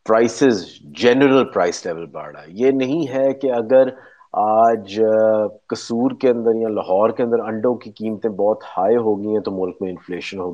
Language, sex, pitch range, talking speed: Urdu, male, 110-175 Hz, 170 wpm